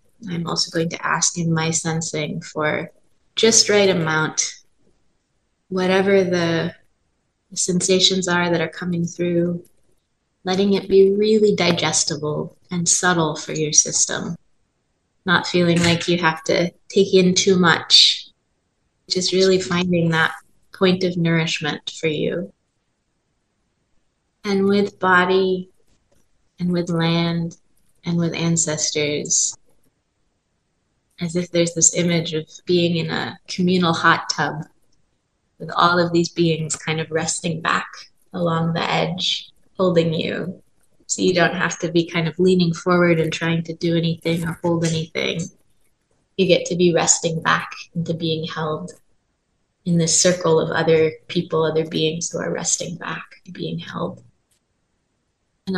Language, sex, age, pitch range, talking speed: English, female, 20-39, 165-185 Hz, 135 wpm